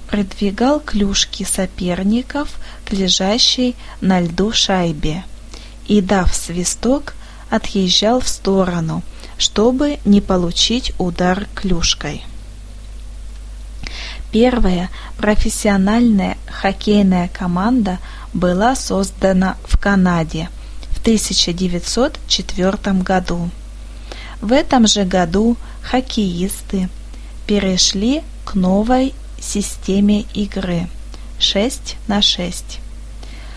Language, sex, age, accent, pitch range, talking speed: Russian, female, 20-39, native, 185-225 Hz, 75 wpm